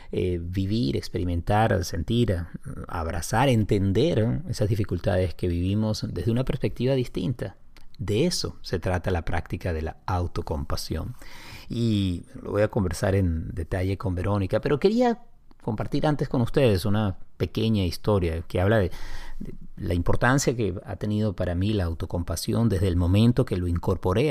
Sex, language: male, Spanish